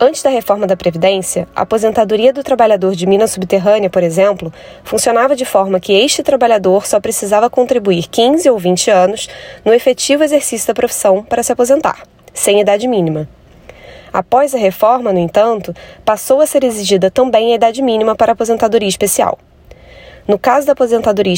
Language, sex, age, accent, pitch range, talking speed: Portuguese, female, 20-39, Brazilian, 195-245 Hz, 165 wpm